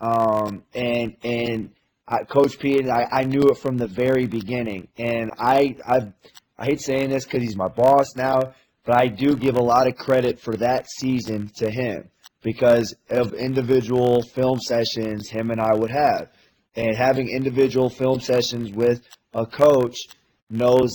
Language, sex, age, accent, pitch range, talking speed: English, male, 20-39, American, 115-130 Hz, 165 wpm